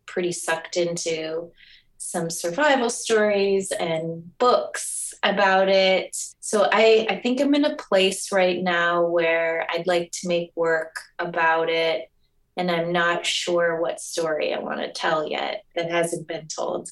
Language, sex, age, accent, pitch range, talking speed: English, female, 20-39, American, 170-220 Hz, 155 wpm